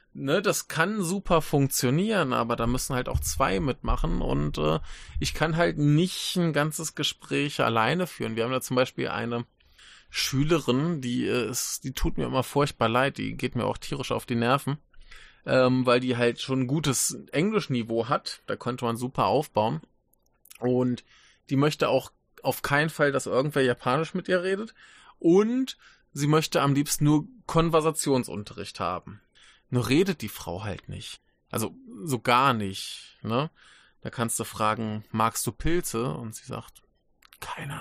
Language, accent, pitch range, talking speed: German, German, 115-150 Hz, 165 wpm